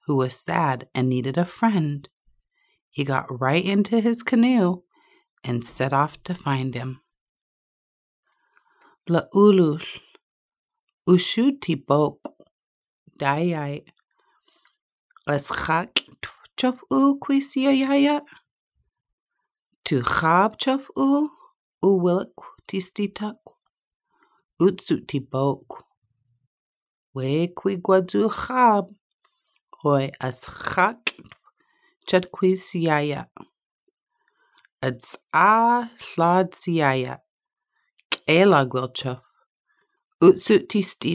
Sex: female